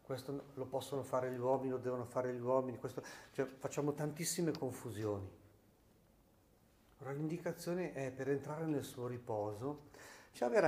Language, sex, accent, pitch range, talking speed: Italian, male, native, 110-145 Hz, 145 wpm